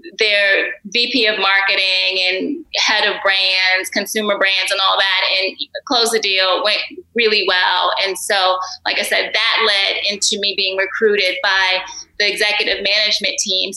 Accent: American